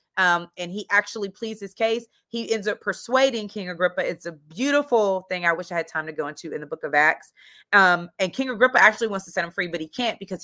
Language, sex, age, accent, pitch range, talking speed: English, female, 30-49, American, 165-215 Hz, 255 wpm